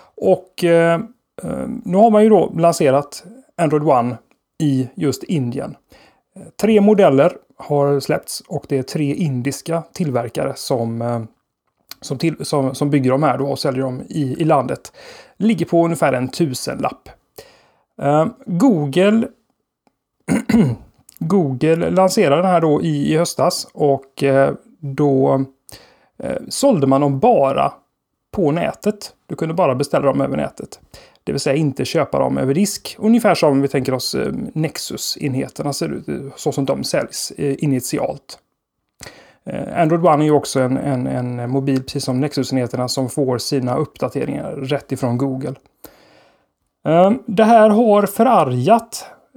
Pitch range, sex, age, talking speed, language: 135-185 Hz, male, 30-49, 140 wpm, Swedish